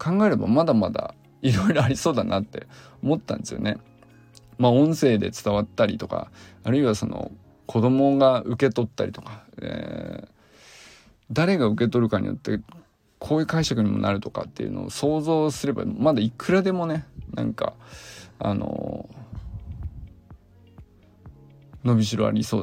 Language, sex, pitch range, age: Japanese, male, 100-155 Hz, 20-39